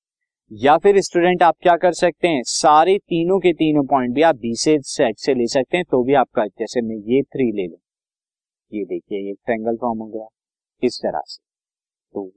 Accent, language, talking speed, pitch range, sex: native, Hindi, 190 wpm, 120-170 Hz, male